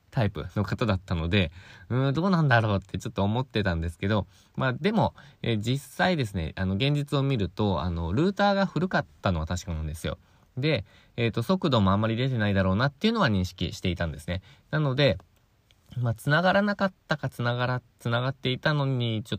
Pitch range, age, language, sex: 95-135 Hz, 20-39, Japanese, male